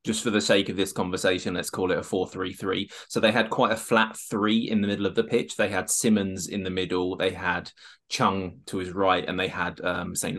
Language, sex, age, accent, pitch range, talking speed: English, male, 20-39, British, 95-110 Hz, 245 wpm